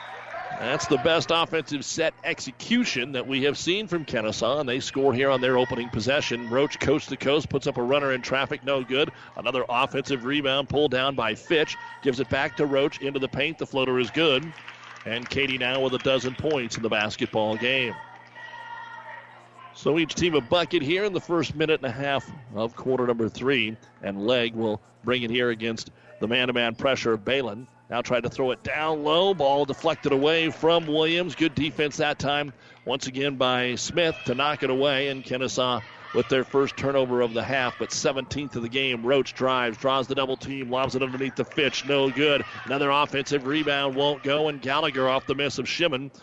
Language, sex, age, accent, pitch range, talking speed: English, male, 40-59, American, 125-145 Hz, 195 wpm